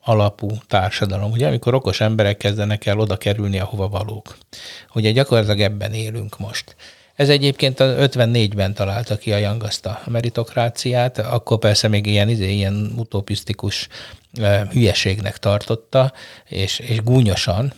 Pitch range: 105-125 Hz